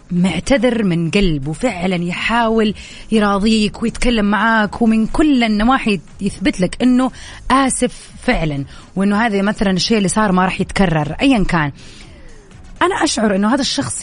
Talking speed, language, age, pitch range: 140 wpm, English, 30-49, 185-240 Hz